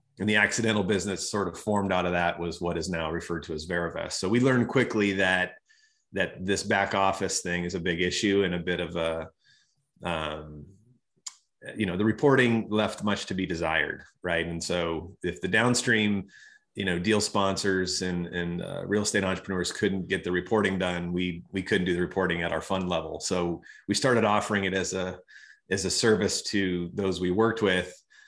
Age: 30-49